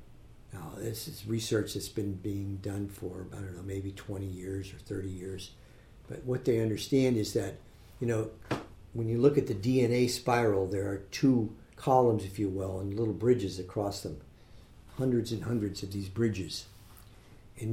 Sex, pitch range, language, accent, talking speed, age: male, 100-125 Hz, English, American, 175 wpm, 50-69